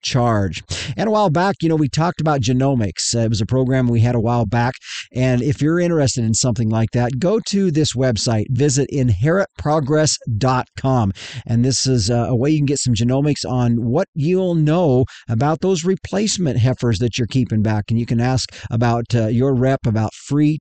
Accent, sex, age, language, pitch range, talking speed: American, male, 50-69, English, 120-150 Hz, 195 wpm